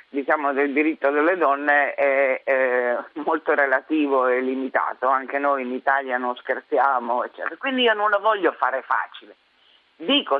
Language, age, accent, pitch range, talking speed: Italian, 50-69, native, 135-185 Hz, 150 wpm